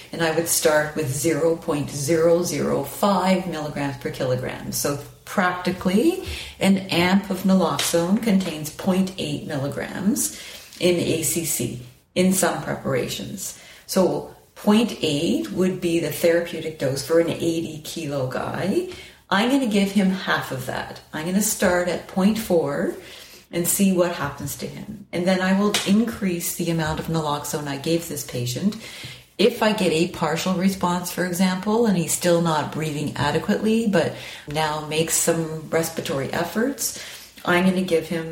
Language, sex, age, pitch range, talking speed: English, female, 40-59, 155-190 Hz, 140 wpm